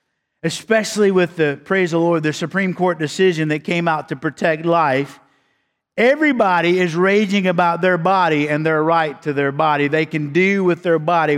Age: 50-69